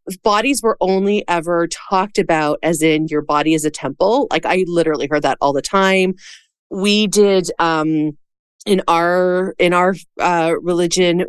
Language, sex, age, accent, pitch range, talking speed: English, female, 30-49, American, 160-195 Hz, 160 wpm